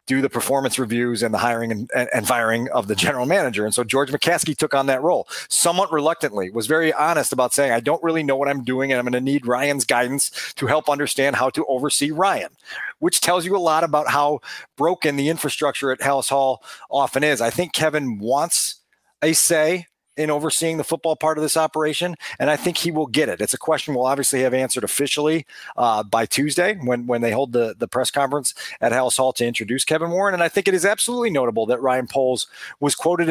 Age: 40-59